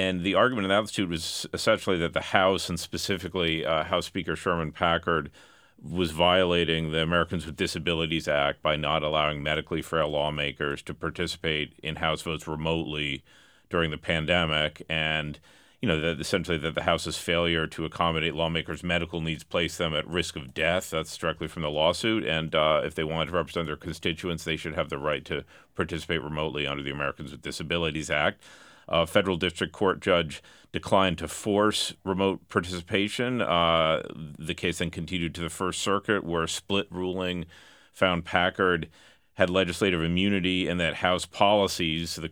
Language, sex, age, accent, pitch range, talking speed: English, male, 40-59, American, 80-90 Hz, 170 wpm